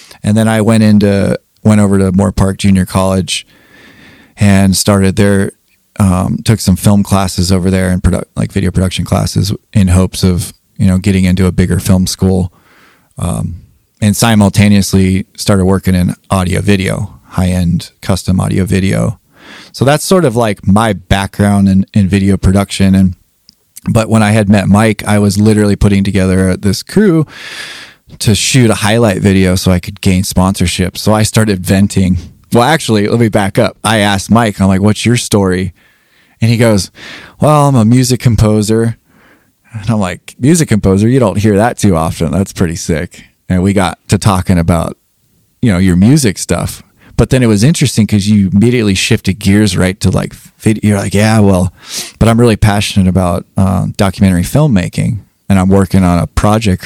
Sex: male